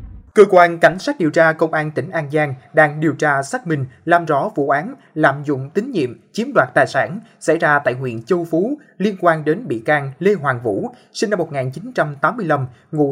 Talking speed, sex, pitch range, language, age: 210 wpm, male, 145-185 Hz, Vietnamese, 20-39